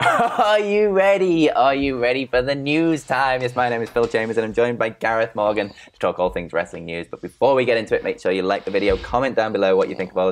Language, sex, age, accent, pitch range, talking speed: English, male, 10-29, British, 95-130 Hz, 280 wpm